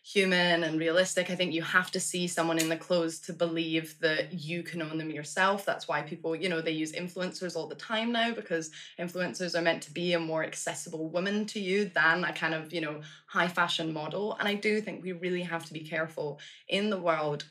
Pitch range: 160-180 Hz